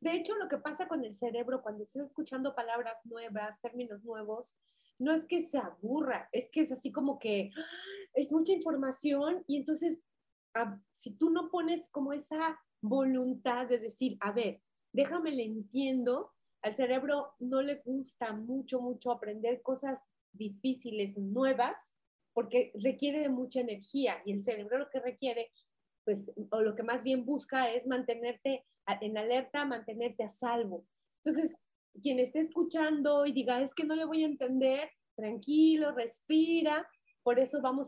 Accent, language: Mexican, Spanish